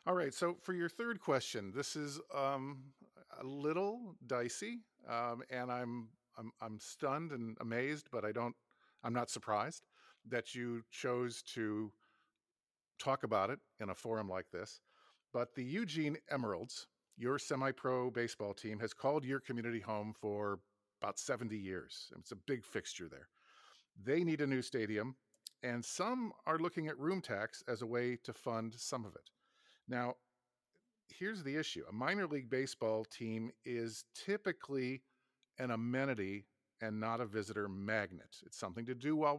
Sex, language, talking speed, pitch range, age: male, English, 160 wpm, 110-135 Hz, 50-69